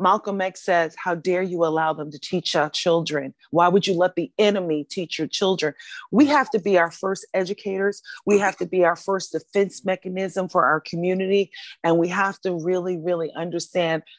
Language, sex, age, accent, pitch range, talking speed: English, female, 40-59, American, 170-210 Hz, 195 wpm